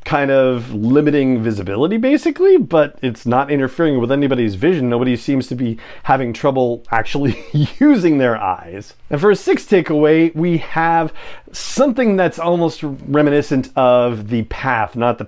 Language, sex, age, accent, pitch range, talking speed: English, male, 30-49, American, 115-155 Hz, 150 wpm